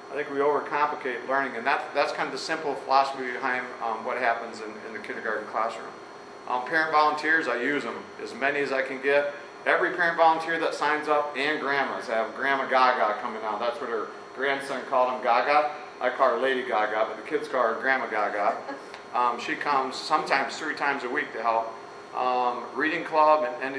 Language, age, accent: English, 40-59, American